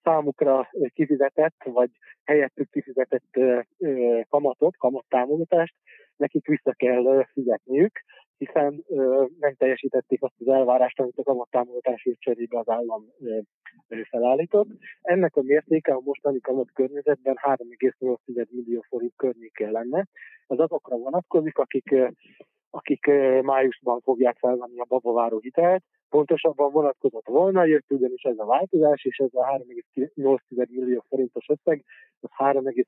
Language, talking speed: Hungarian, 115 wpm